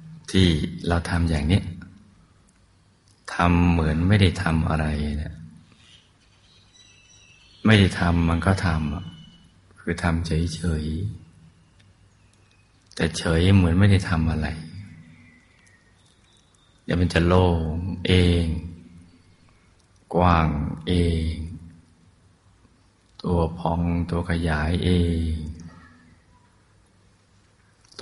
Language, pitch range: Thai, 85-100 Hz